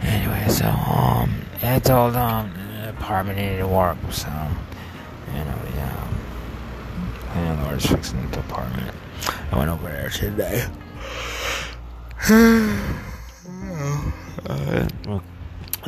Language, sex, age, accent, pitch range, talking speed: English, male, 30-49, American, 80-100 Hz, 95 wpm